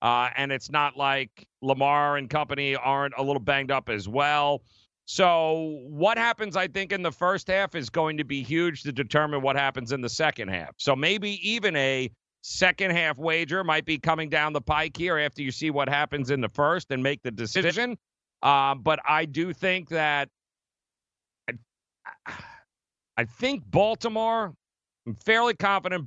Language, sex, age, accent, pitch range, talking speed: English, male, 50-69, American, 135-170 Hz, 170 wpm